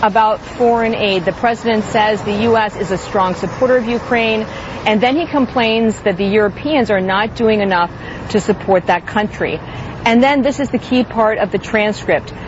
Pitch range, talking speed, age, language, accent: 205-250 Hz, 190 wpm, 40-59, English, American